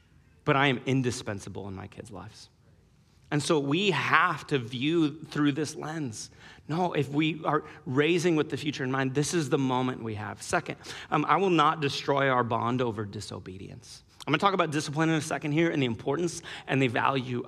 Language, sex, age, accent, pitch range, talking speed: English, male, 30-49, American, 115-150 Hz, 200 wpm